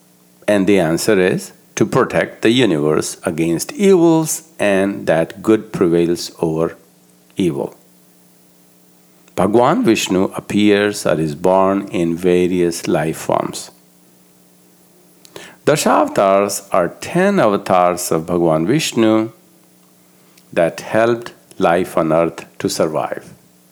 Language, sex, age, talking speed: English, male, 60-79, 100 wpm